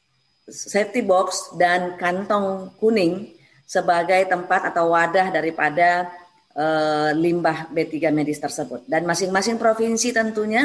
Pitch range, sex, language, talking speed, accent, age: 170-200 Hz, female, Indonesian, 105 wpm, native, 30-49